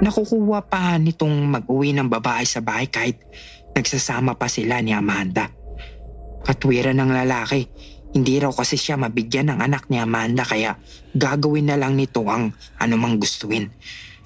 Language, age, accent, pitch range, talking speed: English, 20-39, Filipino, 115-145 Hz, 145 wpm